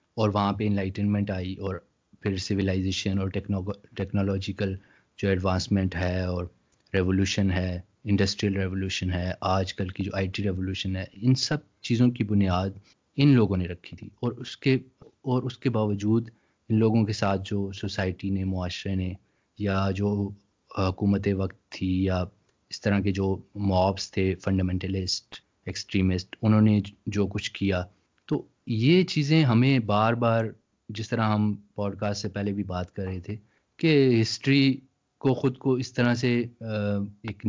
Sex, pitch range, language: male, 95-110 Hz, Urdu